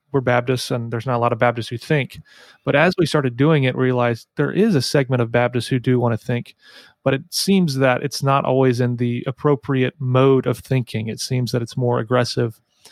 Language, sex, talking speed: English, male, 230 wpm